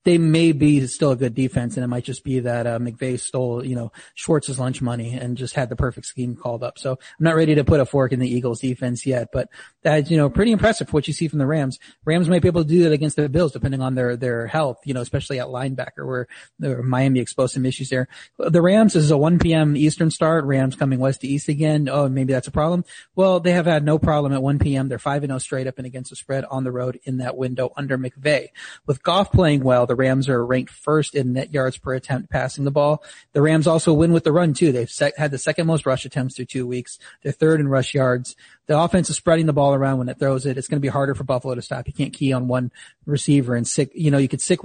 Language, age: English, 30-49